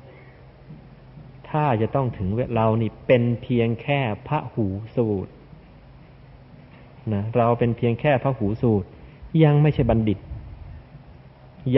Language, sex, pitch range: Thai, male, 105-130 Hz